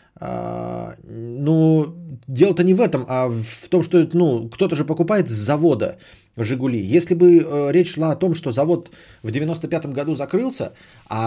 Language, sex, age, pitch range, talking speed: Bulgarian, male, 30-49, 110-155 Hz, 165 wpm